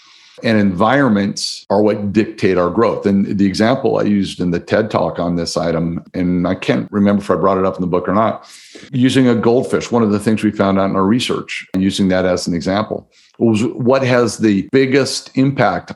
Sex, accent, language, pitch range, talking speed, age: male, American, English, 95-110 Hz, 220 wpm, 50-69